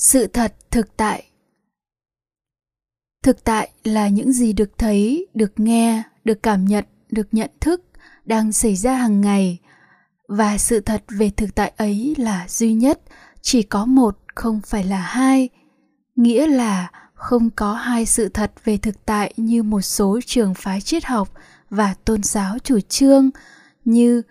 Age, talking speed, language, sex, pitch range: 10-29, 160 wpm, Vietnamese, female, 210-245 Hz